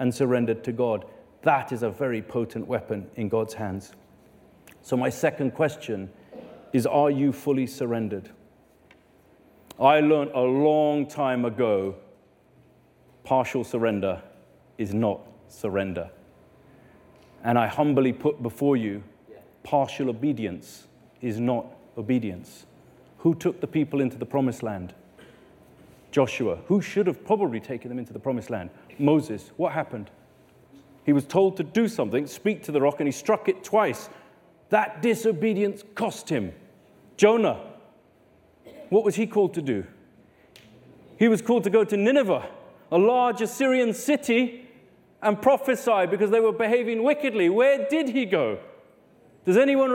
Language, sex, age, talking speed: English, male, 40-59, 140 wpm